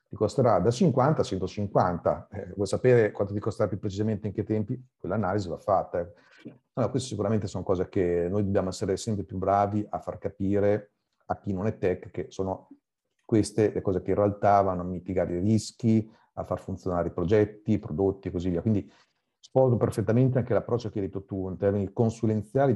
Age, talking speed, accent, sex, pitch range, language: 40-59, 200 wpm, native, male, 95-115 Hz, Italian